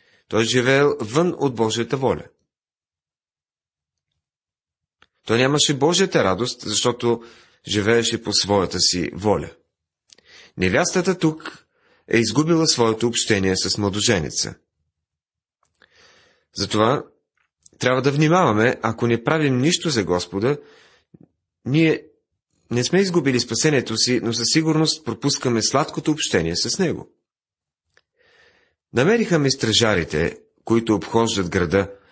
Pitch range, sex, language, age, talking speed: 100-145 Hz, male, Bulgarian, 30-49, 100 wpm